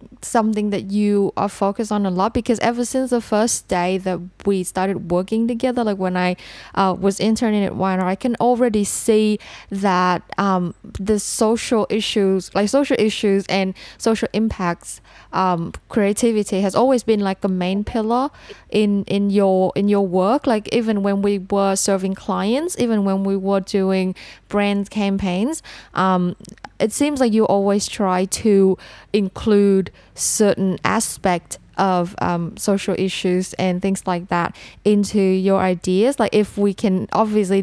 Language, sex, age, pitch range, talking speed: Vietnamese, female, 10-29, 185-220 Hz, 155 wpm